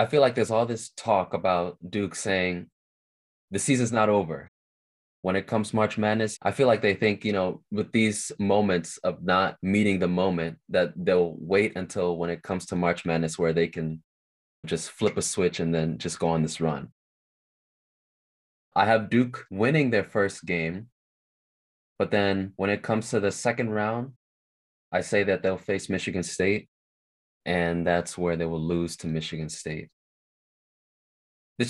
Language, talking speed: English, 170 wpm